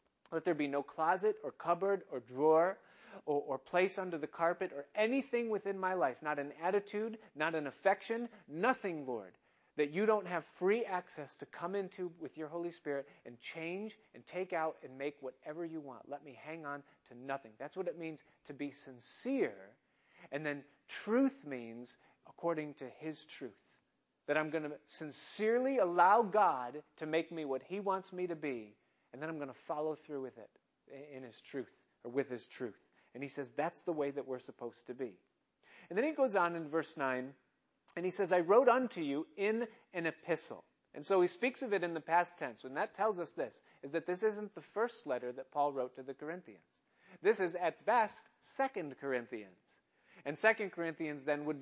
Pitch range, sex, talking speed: 140-195 Hz, male, 200 wpm